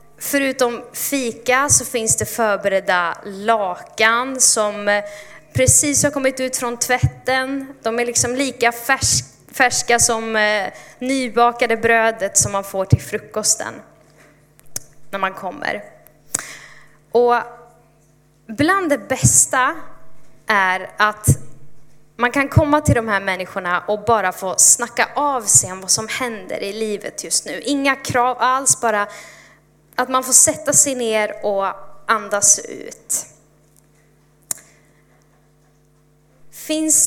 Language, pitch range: Swedish, 185-245 Hz